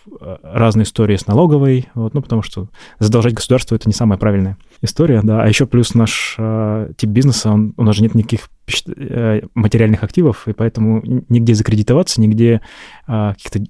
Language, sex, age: Russian, male, 20-39